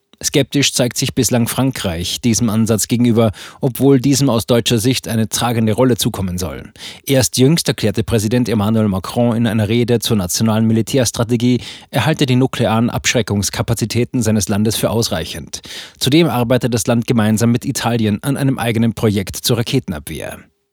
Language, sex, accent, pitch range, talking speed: German, male, German, 110-135 Hz, 150 wpm